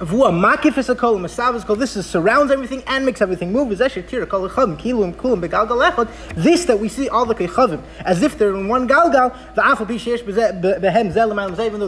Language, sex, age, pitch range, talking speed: English, male, 30-49, 200-265 Hz, 115 wpm